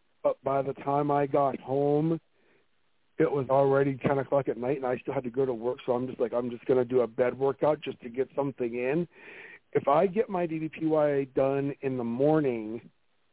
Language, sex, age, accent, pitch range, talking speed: English, male, 50-69, American, 130-155 Hz, 215 wpm